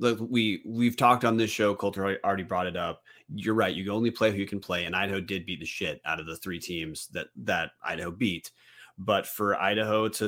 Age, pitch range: 30-49, 85-115 Hz